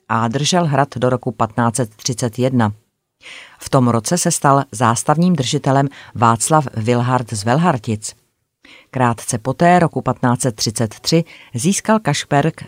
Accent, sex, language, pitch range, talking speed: native, female, Czech, 120-145 Hz, 110 wpm